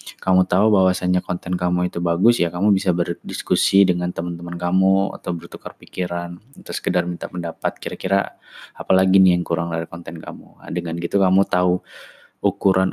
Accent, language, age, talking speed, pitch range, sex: native, Indonesian, 20-39, 160 wpm, 85-100 Hz, male